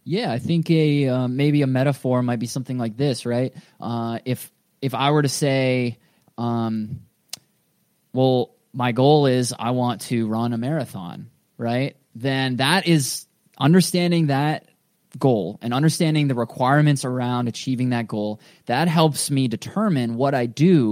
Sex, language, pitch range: male, English, 120-145 Hz